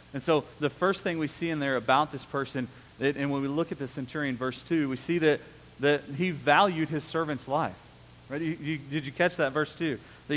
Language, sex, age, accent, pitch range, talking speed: English, male, 40-59, American, 120-160 Hz, 215 wpm